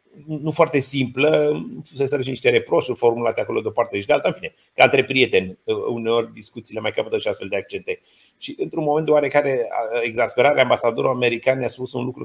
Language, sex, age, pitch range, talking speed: Romanian, male, 30-49, 125-180 Hz, 200 wpm